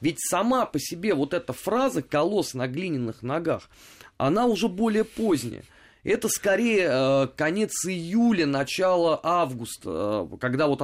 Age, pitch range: 20-39, 130-175 Hz